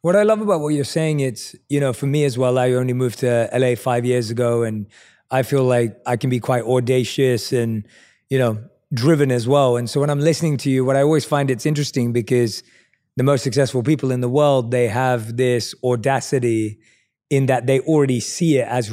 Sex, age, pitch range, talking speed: male, 20-39, 125-145 Hz, 220 wpm